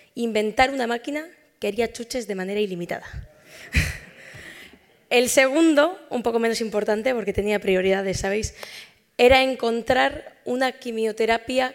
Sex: female